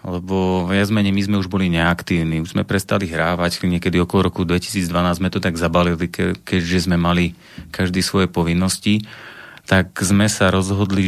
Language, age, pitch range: Slovak, 30-49, 85-95 Hz